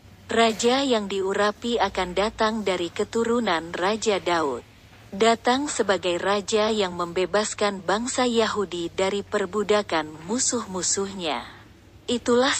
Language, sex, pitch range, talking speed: Indonesian, female, 175-225 Hz, 95 wpm